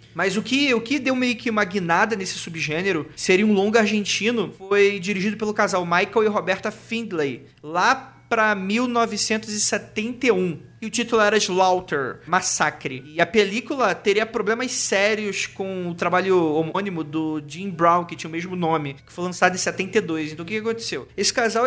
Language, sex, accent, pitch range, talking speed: Portuguese, male, Brazilian, 175-225 Hz, 170 wpm